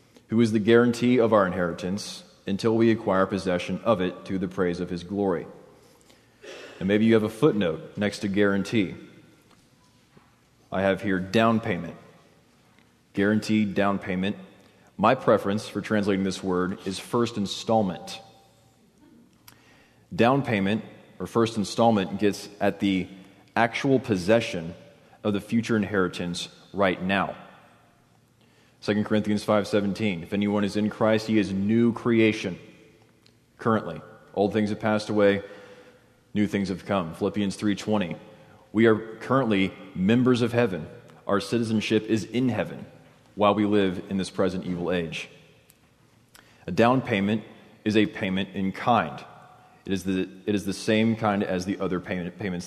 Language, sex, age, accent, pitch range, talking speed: English, male, 30-49, American, 95-110 Hz, 145 wpm